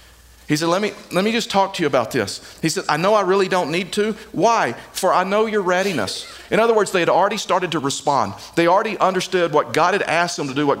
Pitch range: 155-200 Hz